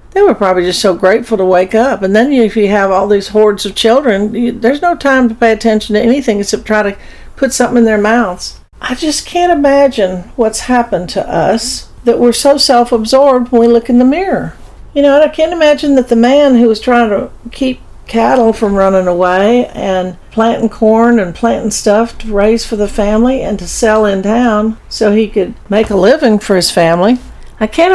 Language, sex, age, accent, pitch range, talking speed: English, female, 50-69, American, 195-245 Hz, 210 wpm